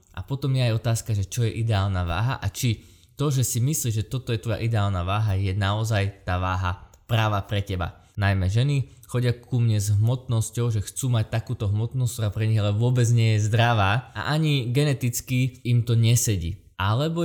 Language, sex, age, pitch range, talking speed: Slovak, male, 20-39, 105-125 Hz, 195 wpm